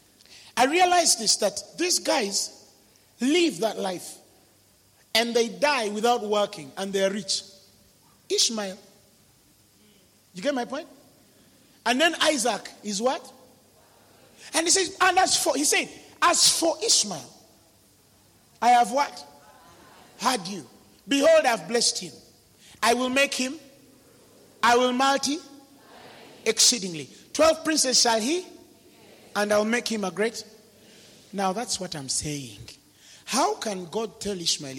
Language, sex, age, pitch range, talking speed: English, male, 40-59, 190-290 Hz, 135 wpm